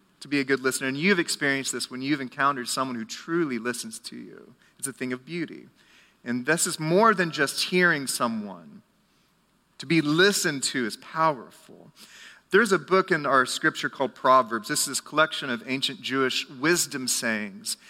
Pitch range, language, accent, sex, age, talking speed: 135-185 Hz, English, American, male, 40-59, 180 wpm